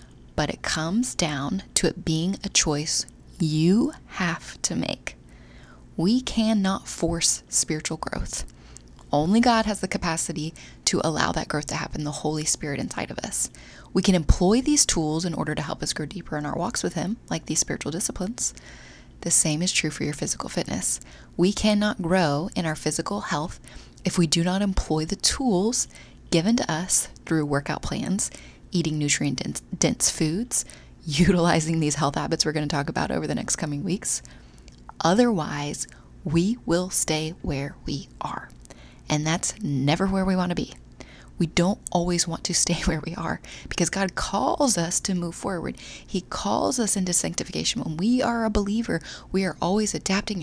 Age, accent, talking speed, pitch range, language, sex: 20-39, American, 175 wpm, 155-195 Hz, English, female